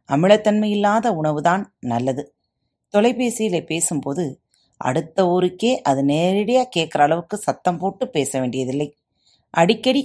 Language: Tamil